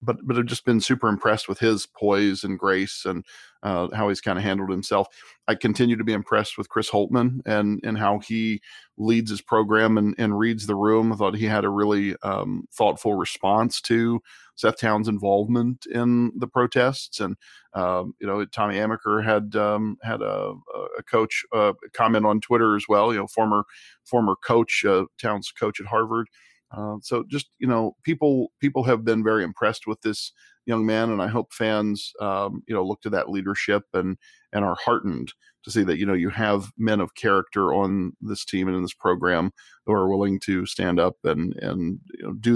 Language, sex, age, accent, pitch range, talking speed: English, male, 40-59, American, 100-120 Hz, 200 wpm